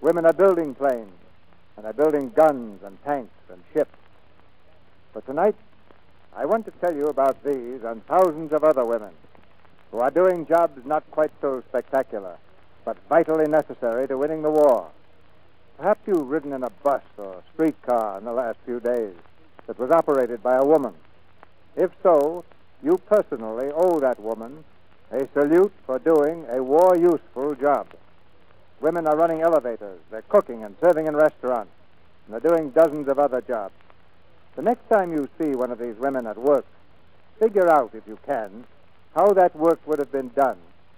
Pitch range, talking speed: 95-155 Hz, 165 wpm